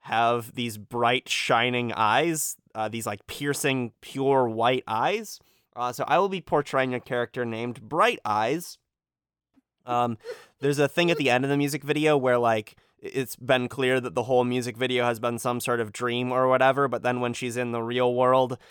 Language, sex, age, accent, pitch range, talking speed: English, male, 20-39, American, 120-135 Hz, 190 wpm